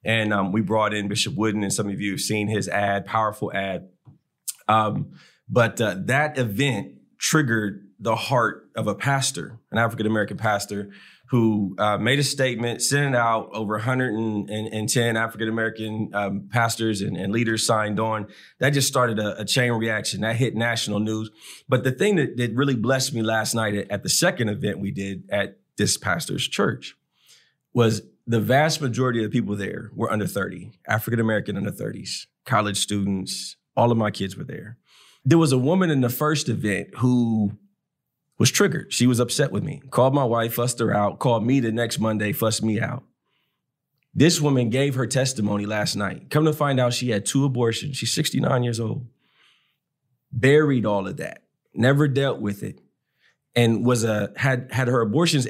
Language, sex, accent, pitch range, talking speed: English, male, American, 105-130 Hz, 180 wpm